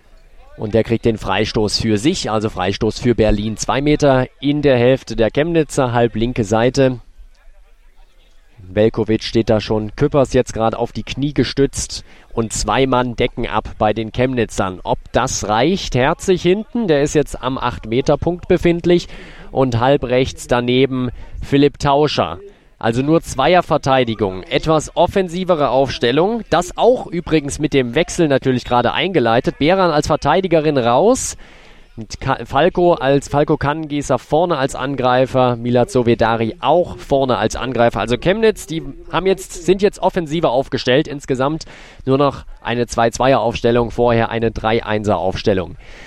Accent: German